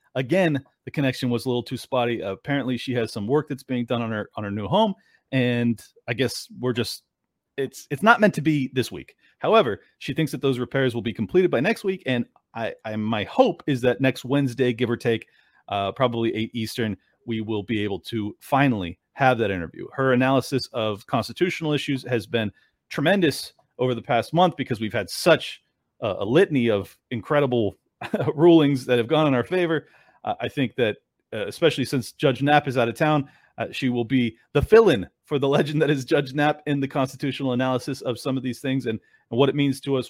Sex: male